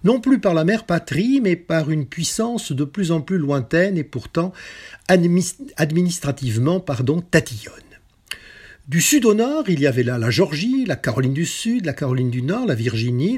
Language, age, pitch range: French, 50-69, 130-190 Hz